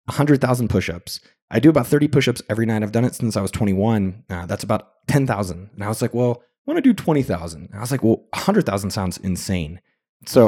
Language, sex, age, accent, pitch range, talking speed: English, male, 20-39, American, 100-145 Hz, 235 wpm